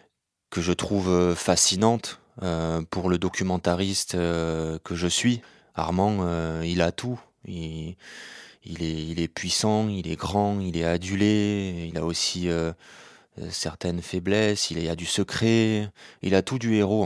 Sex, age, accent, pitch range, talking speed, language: male, 20-39, French, 80-95 Hz, 160 wpm, French